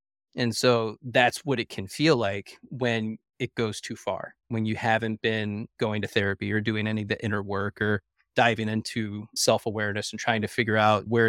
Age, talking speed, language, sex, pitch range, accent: 20-39, 195 wpm, English, male, 105-120 Hz, American